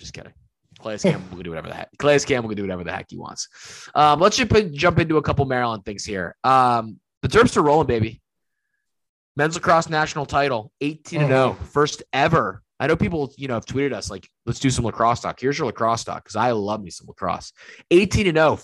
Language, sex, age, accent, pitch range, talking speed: English, male, 20-39, American, 100-140 Hz, 210 wpm